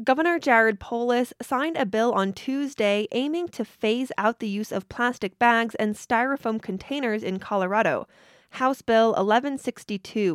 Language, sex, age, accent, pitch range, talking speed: English, female, 20-39, American, 190-235 Hz, 145 wpm